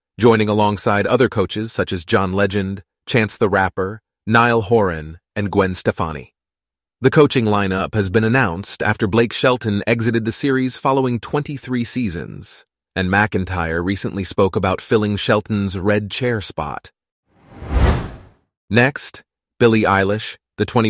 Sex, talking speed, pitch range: male, 130 wpm, 95-120 Hz